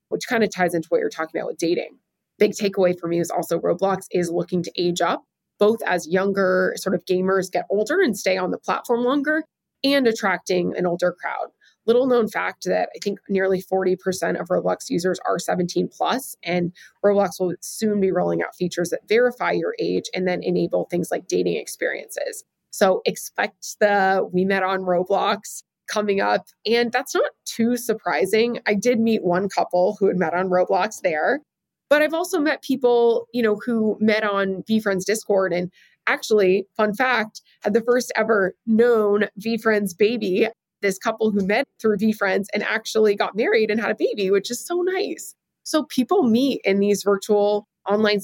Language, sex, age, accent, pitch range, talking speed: English, female, 20-39, American, 185-225 Hz, 185 wpm